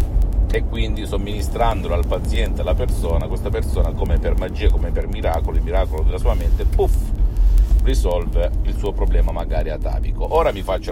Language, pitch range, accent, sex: Italian, 75-105 Hz, native, male